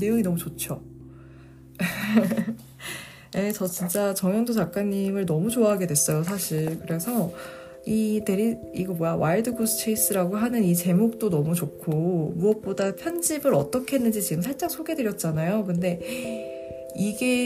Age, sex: 20-39, female